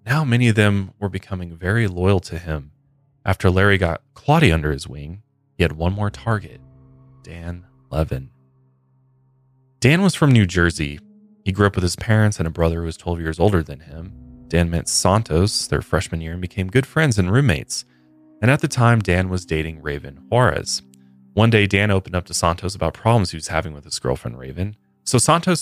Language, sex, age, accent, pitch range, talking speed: English, male, 20-39, American, 80-115 Hz, 195 wpm